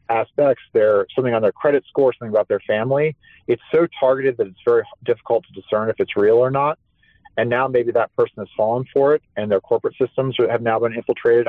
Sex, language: male, English